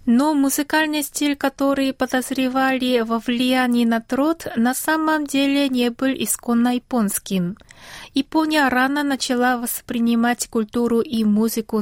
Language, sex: Russian, female